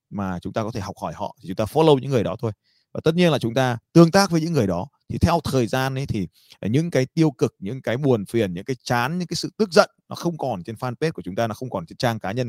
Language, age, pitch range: Vietnamese, 20-39, 115-155 Hz